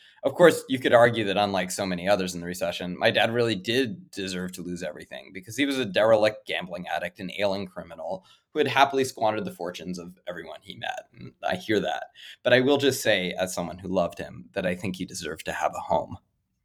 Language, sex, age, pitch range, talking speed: English, male, 20-39, 95-140 Hz, 230 wpm